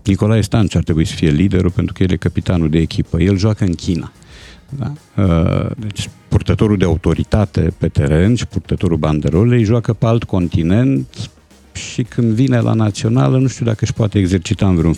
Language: Romanian